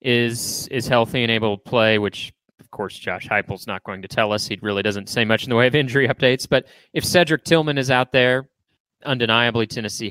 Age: 30-49